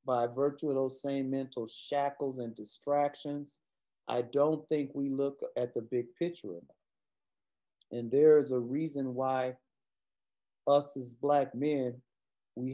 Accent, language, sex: American, English, male